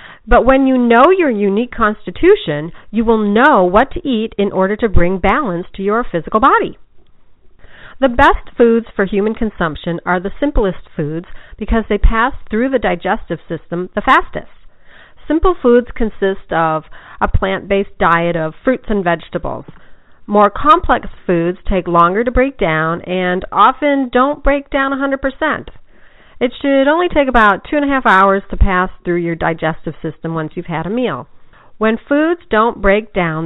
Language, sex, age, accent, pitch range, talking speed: English, female, 40-59, American, 180-265 Hz, 165 wpm